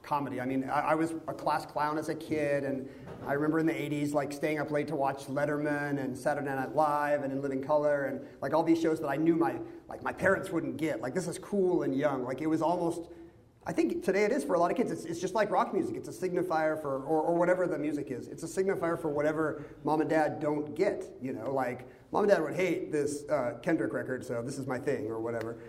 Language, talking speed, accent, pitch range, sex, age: English, 260 wpm, American, 135-170 Hz, male, 40-59